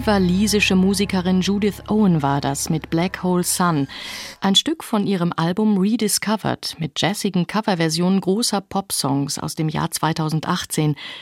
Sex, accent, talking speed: female, German, 135 wpm